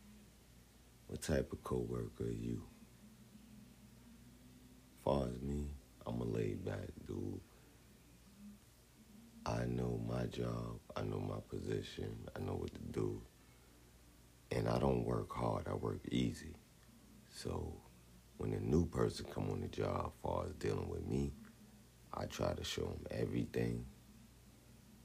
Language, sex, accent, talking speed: English, male, American, 130 wpm